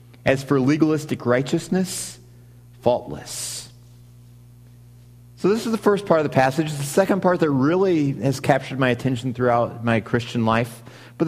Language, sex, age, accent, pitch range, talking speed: English, male, 30-49, American, 120-160 Hz, 150 wpm